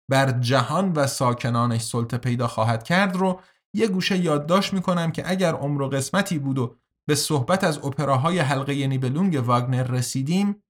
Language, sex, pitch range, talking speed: Persian, male, 135-180 Hz, 155 wpm